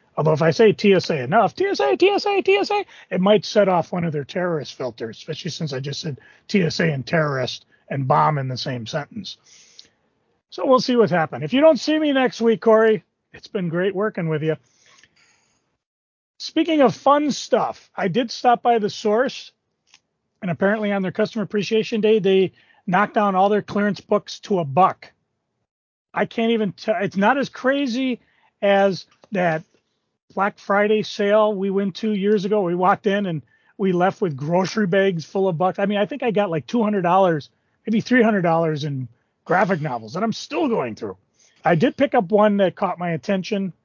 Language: English